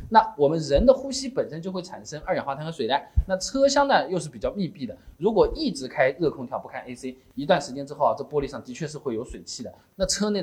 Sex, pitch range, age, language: male, 150-245 Hz, 20-39, Chinese